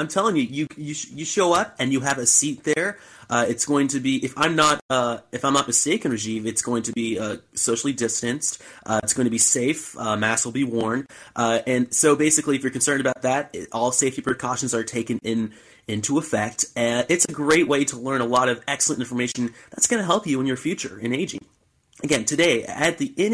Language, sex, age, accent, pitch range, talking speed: English, male, 30-49, American, 125-200 Hz, 235 wpm